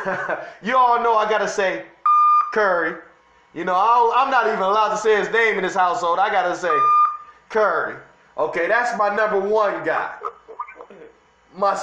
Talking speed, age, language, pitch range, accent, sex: 170 wpm, 30-49, English, 205-295 Hz, American, male